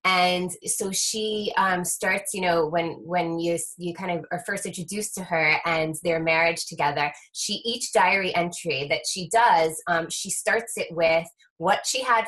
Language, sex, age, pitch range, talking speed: English, female, 20-39, 165-195 Hz, 180 wpm